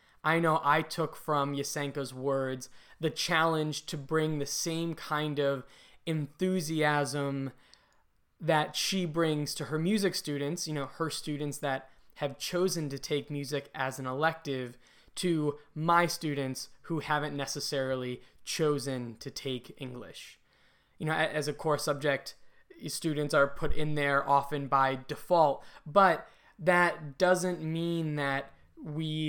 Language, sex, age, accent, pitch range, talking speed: English, male, 10-29, American, 140-160 Hz, 135 wpm